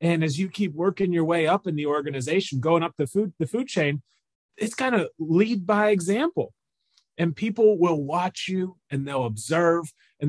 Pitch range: 130-185 Hz